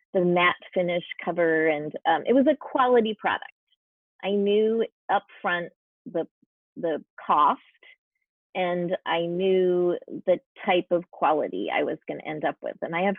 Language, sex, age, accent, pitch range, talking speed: English, female, 30-49, American, 170-210 Hz, 155 wpm